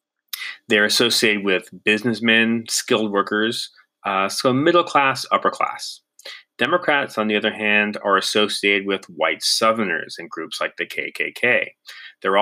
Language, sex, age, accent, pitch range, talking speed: English, male, 30-49, American, 105-145 Hz, 135 wpm